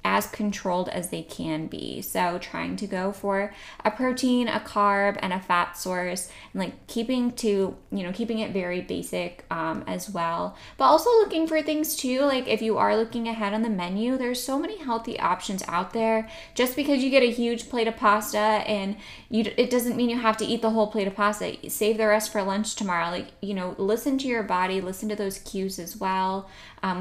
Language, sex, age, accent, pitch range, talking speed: English, female, 10-29, American, 190-245 Hz, 215 wpm